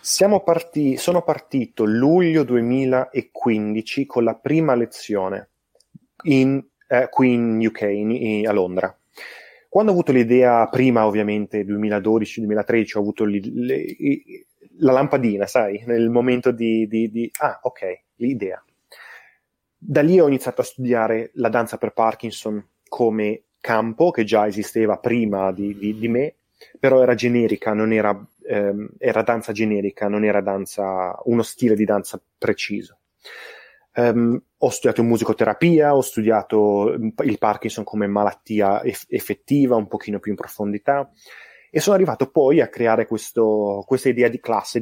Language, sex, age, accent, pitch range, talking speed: Italian, male, 30-49, native, 105-130 Hz, 140 wpm